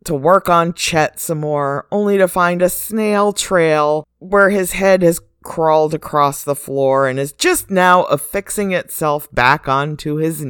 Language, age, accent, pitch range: English, 50-69, American, 125-160 Hz